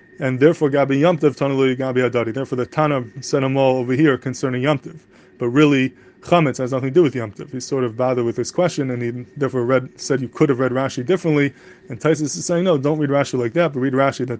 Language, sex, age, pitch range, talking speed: English, male, 20-39, 125-145 Hz, 245 wpm